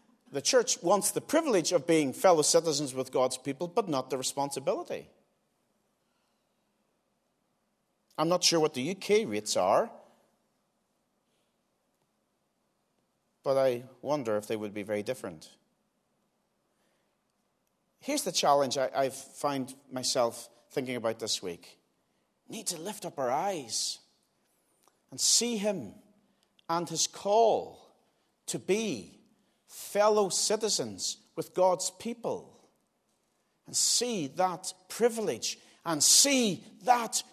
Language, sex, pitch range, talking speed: English, male, 135-220 Hz, 115 wpm